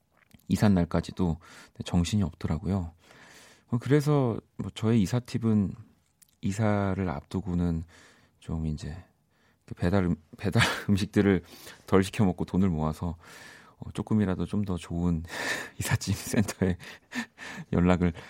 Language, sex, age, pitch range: Korean, male, 40-59, 90-120 Hz